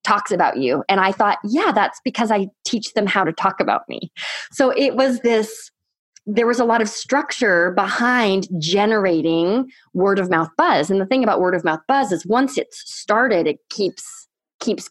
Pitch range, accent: 180-235 Hz, American